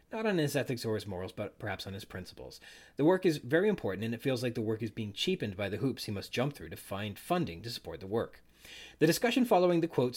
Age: 30-49